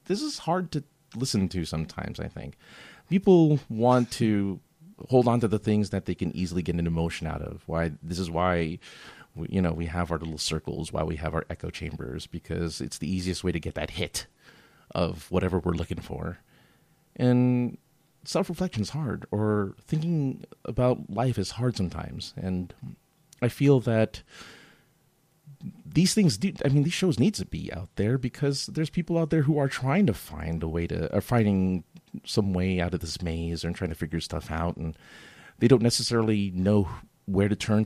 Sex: male